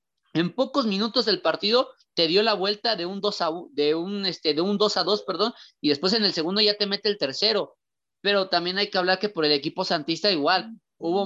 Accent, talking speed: Mexican, 230 wpm